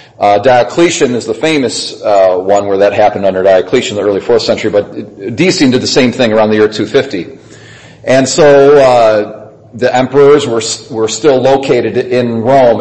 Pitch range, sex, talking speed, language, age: 110-145 Hz, male, 180 wpm, English, 40-59